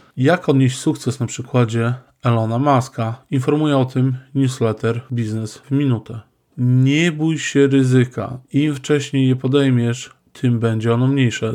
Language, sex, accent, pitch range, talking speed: Polish, male, native, 120-135 Hz, 135 wpm